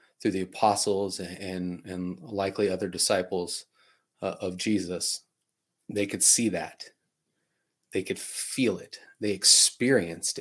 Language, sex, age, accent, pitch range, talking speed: English, male, 30-49, American, 90-105 Hz, 120 wpm